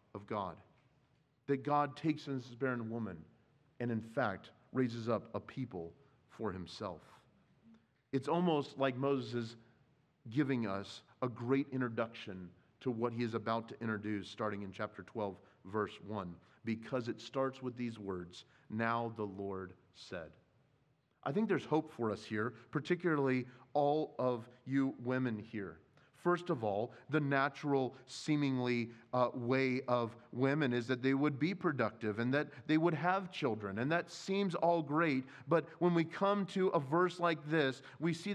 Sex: male